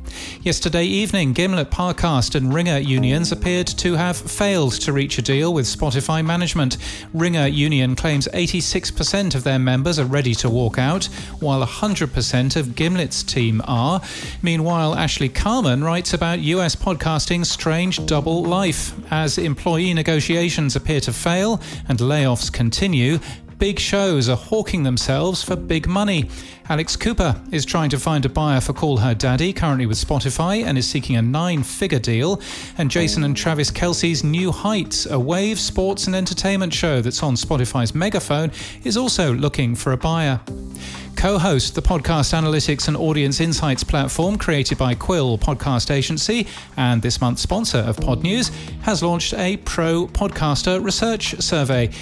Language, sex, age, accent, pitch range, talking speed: English, male, 40-59, British, 130-175 Hz, 155 wpm